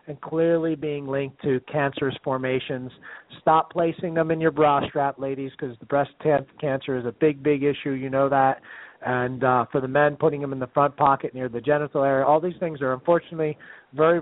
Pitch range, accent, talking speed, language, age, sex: 135-160 Hz, American, 205 wpm, English, 40-59, male